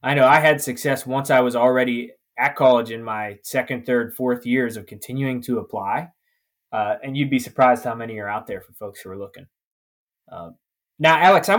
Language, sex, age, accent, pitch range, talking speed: English, male, 20-39, American, 125-165 Hz, 205 wpm